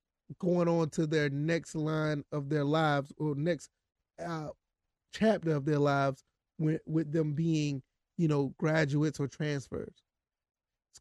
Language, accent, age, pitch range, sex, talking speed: English, American, 30-49, 145-165 Hz, male, 140 wpm